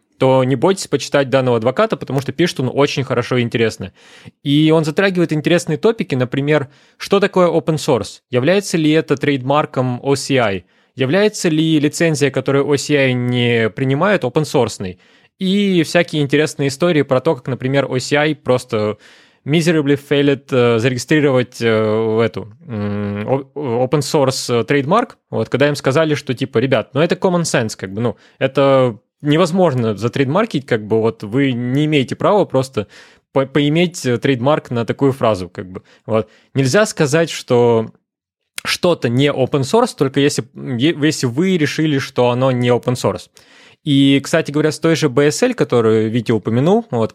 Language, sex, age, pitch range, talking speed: Russian, male, 20-39, 120-155 Hz, 155 wpm